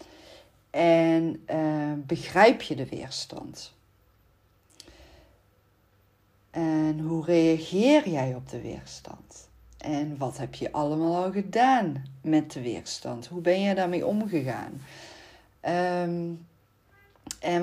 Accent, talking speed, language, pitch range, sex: Dutch, 100 wpm, Dutch, 155-195 Hz, female